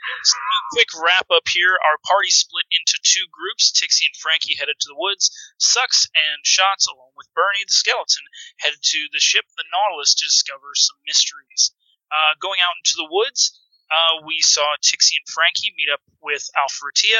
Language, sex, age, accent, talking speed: English, male, 30-49, American, 180 wpm